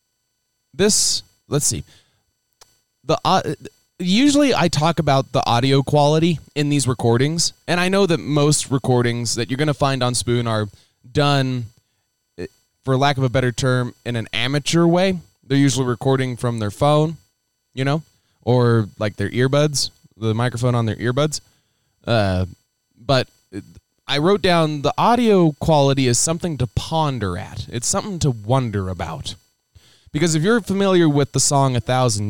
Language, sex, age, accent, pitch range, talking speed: English, male, 20-39, American, 115-150 Hz, 155 wpm